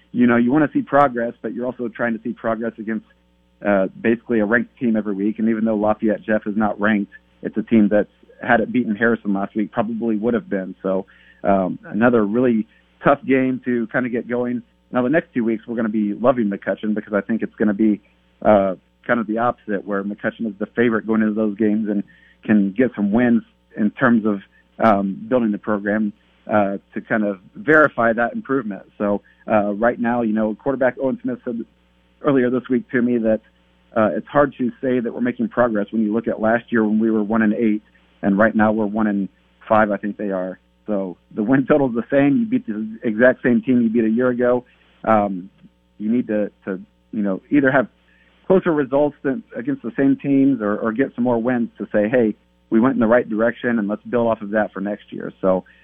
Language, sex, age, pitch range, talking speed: English, male, 40-59, 105-120 Hz, 225 wpm